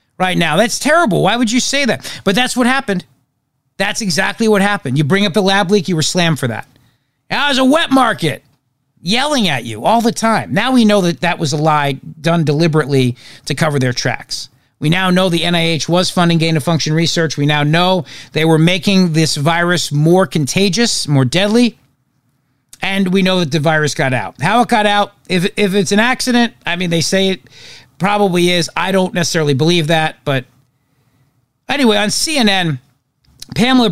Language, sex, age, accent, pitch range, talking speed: English, male, 40-59, American, 140-205 Hz, 190 wpm